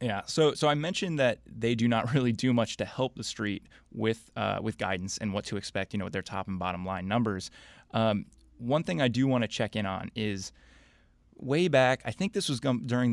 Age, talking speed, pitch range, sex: 20-39, 240 wpm, 95-120 Hz, male